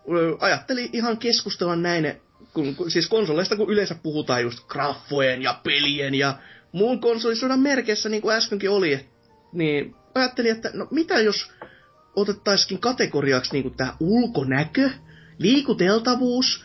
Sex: male